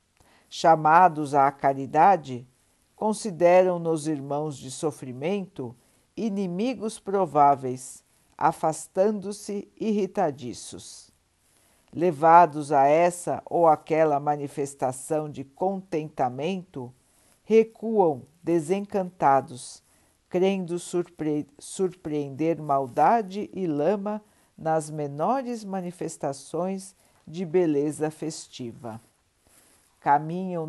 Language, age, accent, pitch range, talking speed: Portuguese, 60-79, Brazilian, 135-190 Hz, 65 wpm